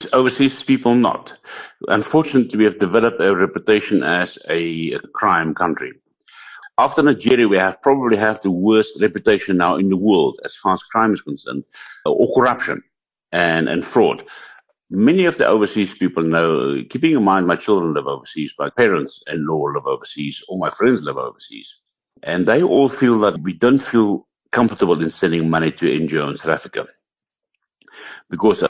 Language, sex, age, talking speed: English, male, 60-79, 165 wpm